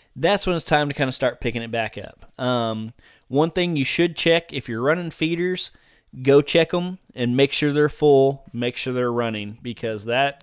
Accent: American